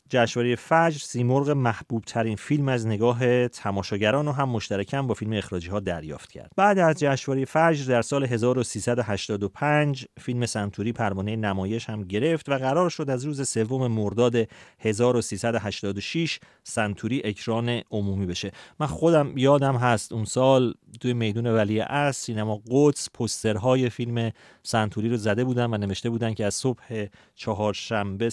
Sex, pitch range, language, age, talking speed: male, 105-135 Hz, Persian, 40-59, 145 wpm